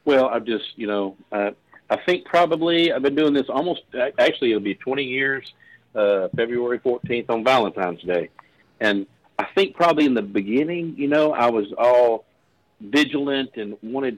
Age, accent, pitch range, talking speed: 50-69, American, 105-135 Hz, 170 wpm